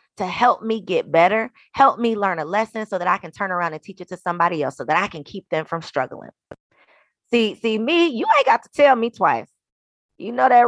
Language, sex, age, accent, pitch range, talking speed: English, female, 20-39, American, 185-265 Hz, 240 wpm